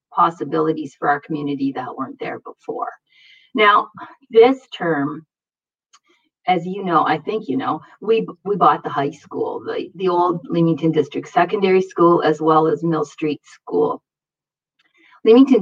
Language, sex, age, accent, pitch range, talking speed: English, female, 40-59, American, 160-220 Hz, 145 wpm